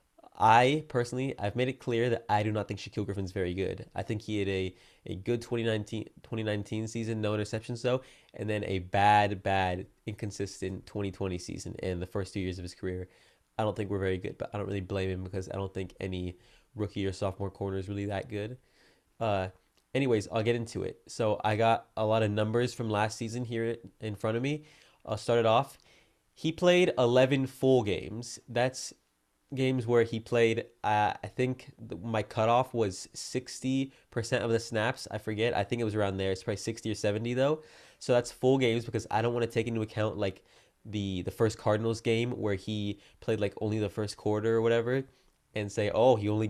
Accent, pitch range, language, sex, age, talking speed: American, 100-120 Hz, English, male, 20-39, 210 wpm